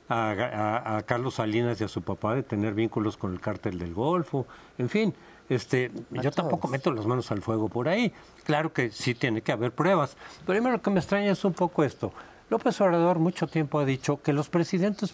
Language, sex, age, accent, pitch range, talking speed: Spanish, male, 50-69, Mexican, 115-170 Hz, 220 wpm